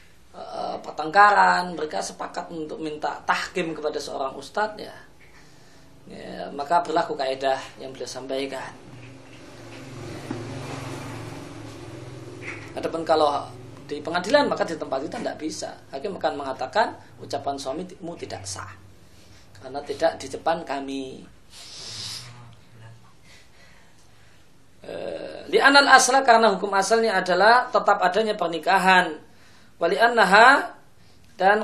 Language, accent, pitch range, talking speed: Indonesian, native, 135-205 Hz, 95 wpm